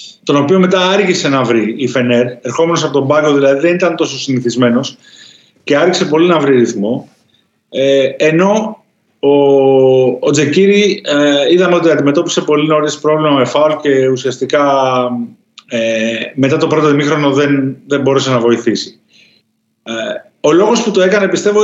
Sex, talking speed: male, 145 wpm